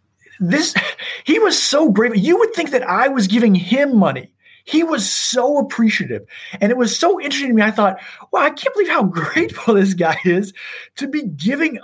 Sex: male